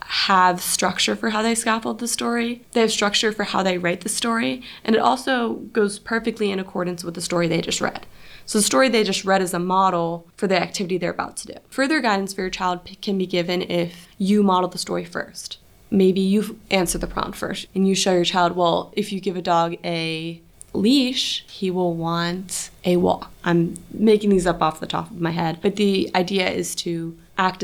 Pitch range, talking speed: 170-215 Hz, 220 wpm